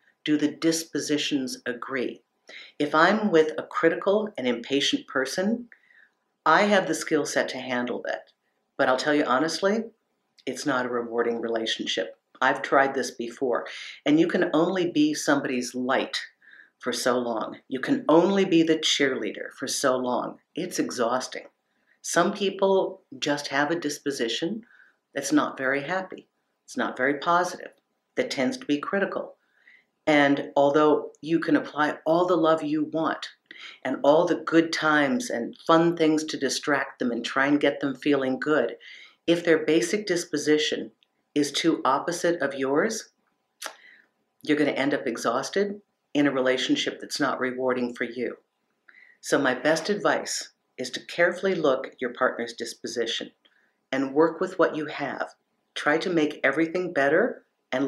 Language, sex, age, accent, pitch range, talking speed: English, female, 50-69, American, 130-170 Hz, 155 wpm